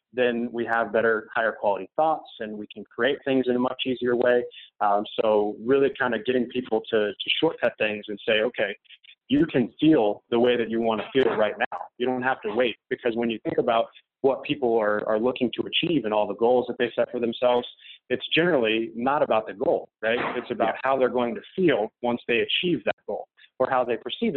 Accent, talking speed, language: American, 225 wpm, English